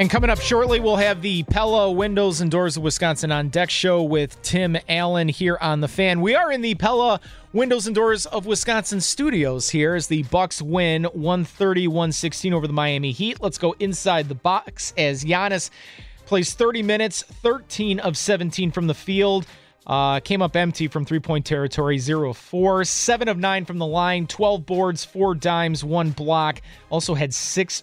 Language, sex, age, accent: English, male, 30-49, American